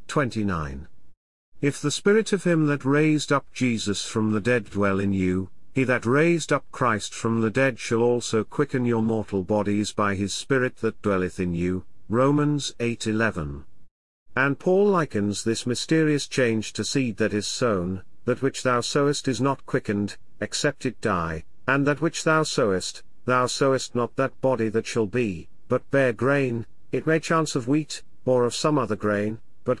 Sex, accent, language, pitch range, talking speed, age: male, British, English, 105-140 Hz, 175 wpm, 50-69